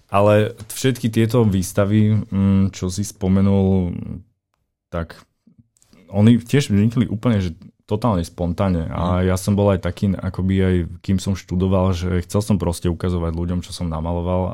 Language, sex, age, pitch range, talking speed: Slovak, male, 20-39, 85-95 Hz, 145 wpm